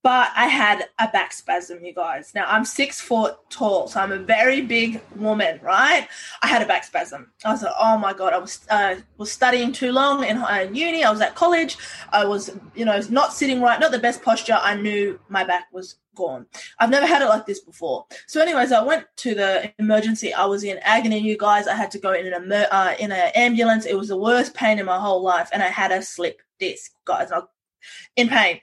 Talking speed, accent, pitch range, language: 235 wpm, Australian, 195-245 Hz, English